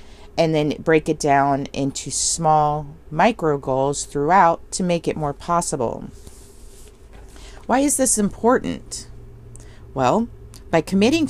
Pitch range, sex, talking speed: 125-185 Hz, female, 115 wpm